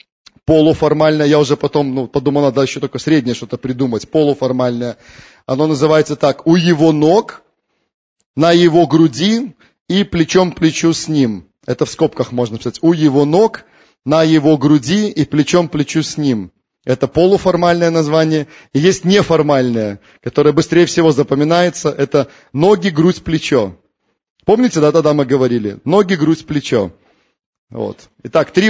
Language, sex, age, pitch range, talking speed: Russian, male, 30-49, 145-180 Hz, 140 wpm